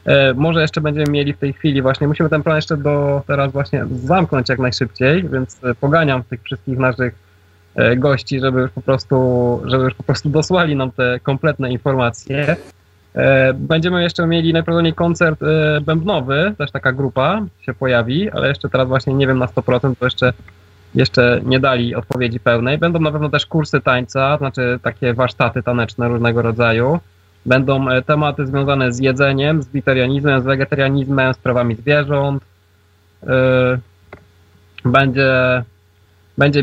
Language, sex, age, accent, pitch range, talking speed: Polish, male, 20-39, native, 125-145 Hz, 145 wpm